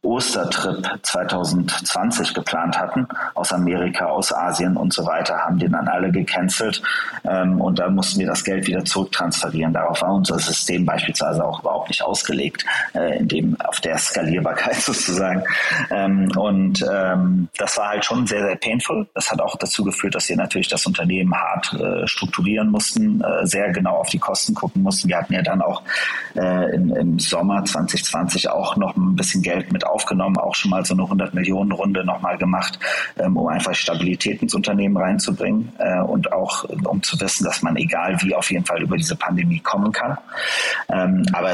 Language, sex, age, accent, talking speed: German, male, 30-49, German, 180 wpm